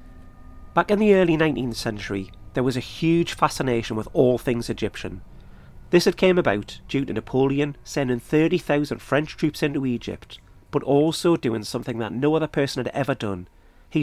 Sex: male